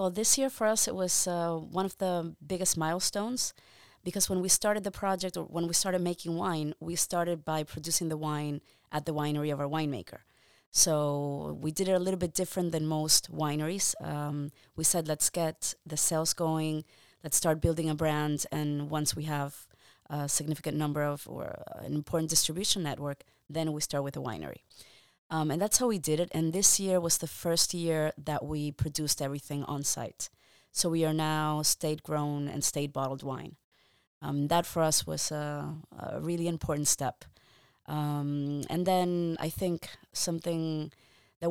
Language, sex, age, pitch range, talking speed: English, female, 30-49, 150-170 Hz, 180 wpm